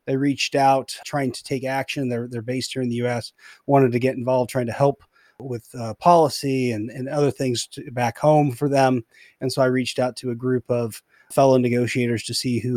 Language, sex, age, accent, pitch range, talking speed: English, male, 30-49, American, 125-150 Hz, 220 wpm